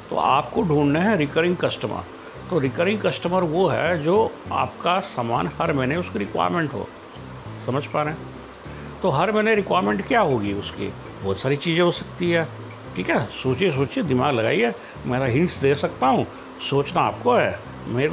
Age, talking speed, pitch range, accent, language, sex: 60-79, 170 wpm, 115-175 Hz, native, Hindi, male